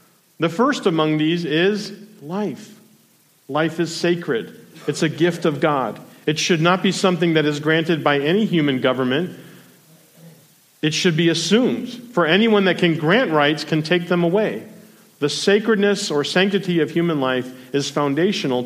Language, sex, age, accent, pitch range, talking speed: English, male, 50-69, American, 150-200 Hz, 160 wpm